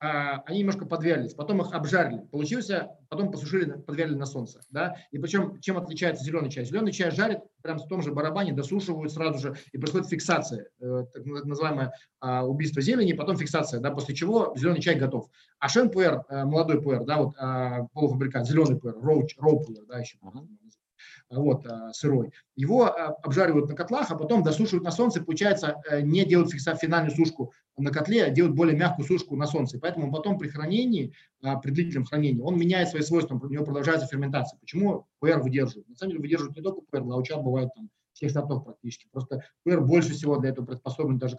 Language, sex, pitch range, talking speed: Russian, male, 135-175 Hz, 180 wpm